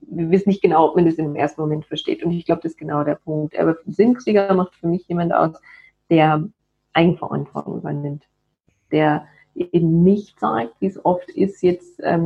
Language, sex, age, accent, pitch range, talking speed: German, female, 30-49, German, 160-200 Hz, 195 wpm